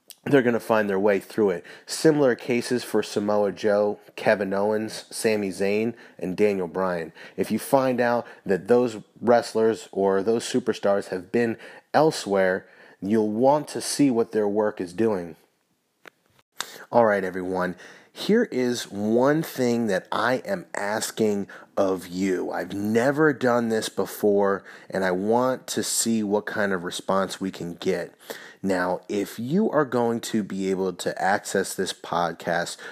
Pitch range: 95-115 Hz